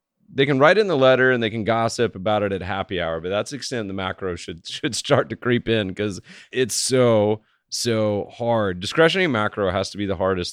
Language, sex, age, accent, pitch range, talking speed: English, male, 30-49, American, 90-115 Hz, 220 wpm